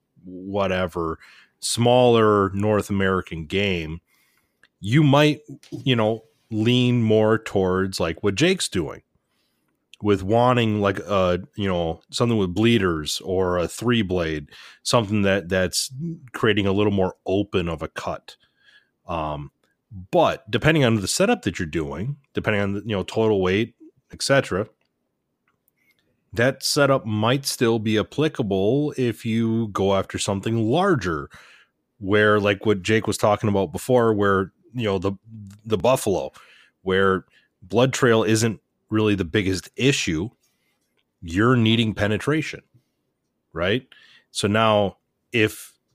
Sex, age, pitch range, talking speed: male, 30-49, 95-115 Hz, 130 wpm